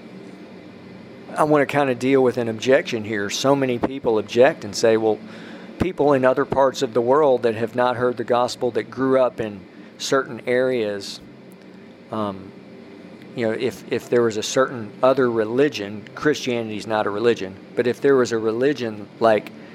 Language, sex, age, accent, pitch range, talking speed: English, male, 50-69, American, 110-135 Hz, 180 wpm